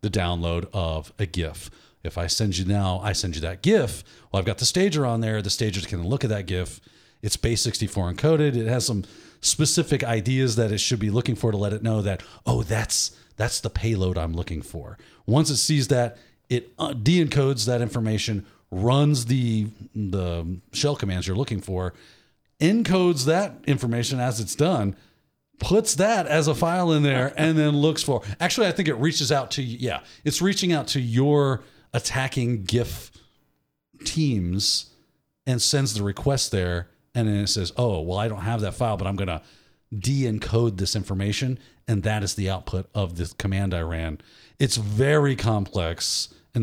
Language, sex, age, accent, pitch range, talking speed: English, male, 40-59, American, 100-135 Hz, 185 wpm